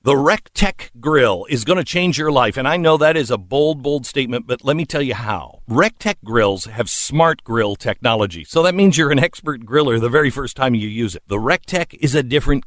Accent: American